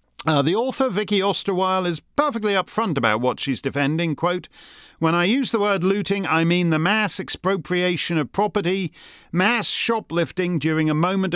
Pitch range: 155-235 Hz